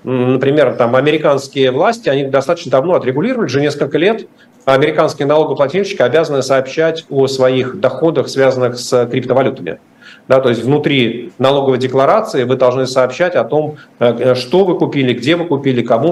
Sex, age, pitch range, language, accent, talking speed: male, 50-69, 130-170 Hz, Russian, native, 145 wpm